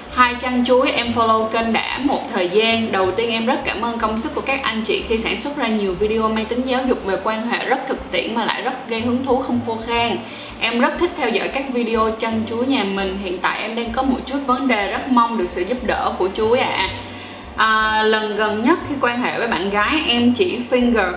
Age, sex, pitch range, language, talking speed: 10-29, female, 205-260 Hz, Vietnamese, 250 wpm